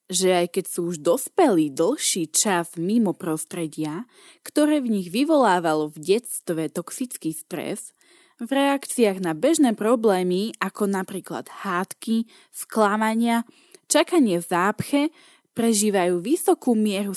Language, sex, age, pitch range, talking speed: Slovak, female, 20-39, 180-275 Hz, 115 wpm